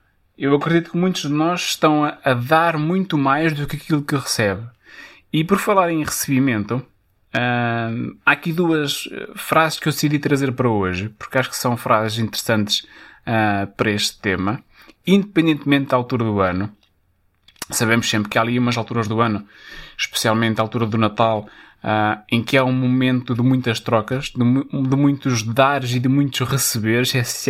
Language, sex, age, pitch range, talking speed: Portuguese, male, 20-39, 110-150 Hz, 175 wpm